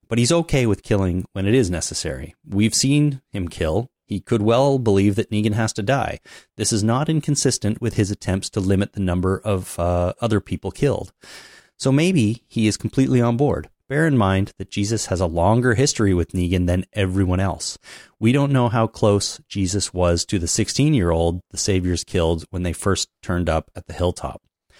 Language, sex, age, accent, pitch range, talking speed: English, male, 30-49, American, 90-115 Hz, 195 wpm